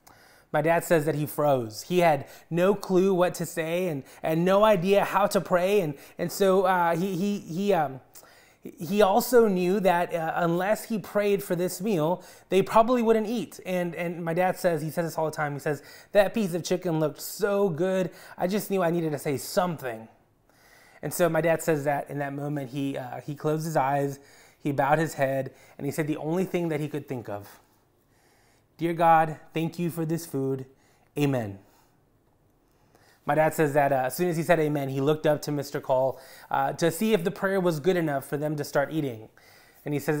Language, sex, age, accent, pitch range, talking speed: English, male, 20-39, American, 140-180 Hz, 215 wpm